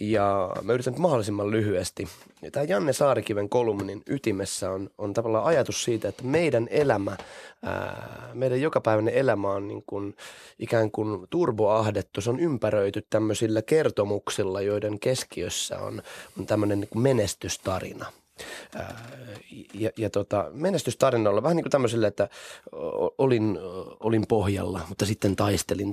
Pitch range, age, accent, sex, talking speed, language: 100-115 Hz, 20-39, native, male, 125 wpm, Finnish